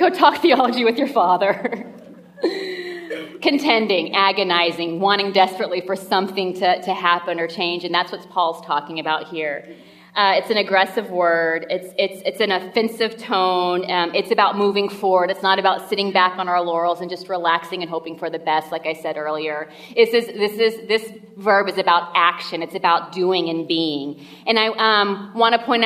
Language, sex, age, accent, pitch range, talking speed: English, female, 30-49, American, 175-200 Hz, 190 wpm